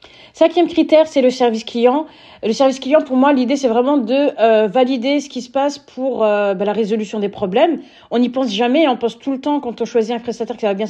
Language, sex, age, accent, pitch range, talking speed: French, female, 40-59, French, 225-270 Hz, 255 wpm